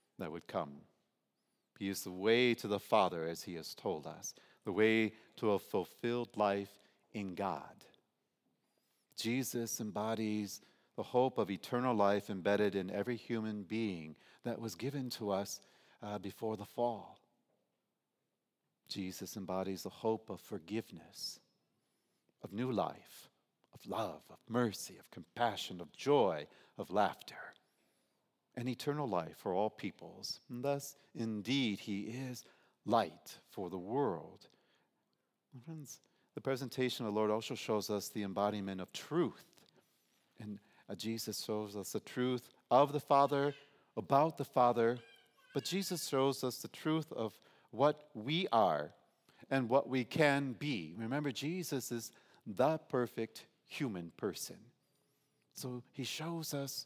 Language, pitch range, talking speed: English, 105-140 Hz, 135 wpm